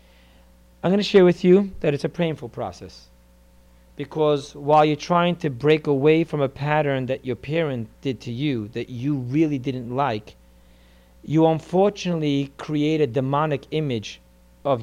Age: 50-69